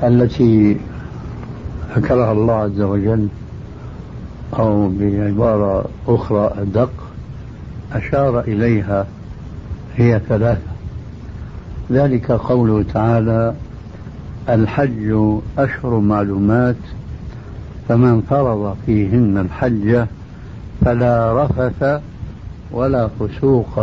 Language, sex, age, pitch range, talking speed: Arabic, male, 70-89, 105-125 Hz, 70 wpm